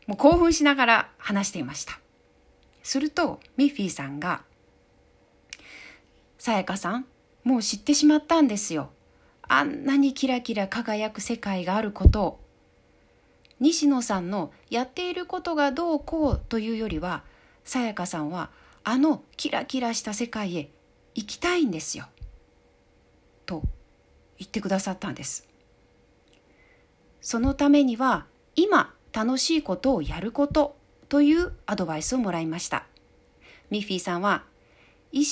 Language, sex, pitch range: Japanese, female, 170-280 Hz